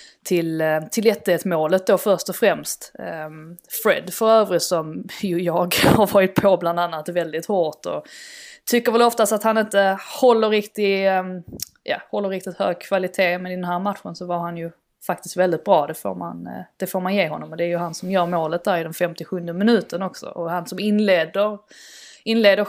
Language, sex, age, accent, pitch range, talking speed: Swedish, female, 20-39, native, 170-205 Hz, 200 wpm